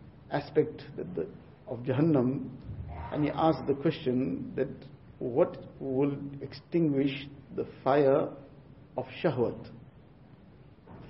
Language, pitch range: English, 130-150 Hz